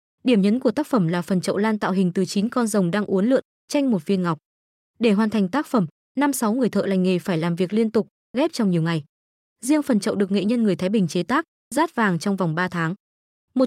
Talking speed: 265 wpm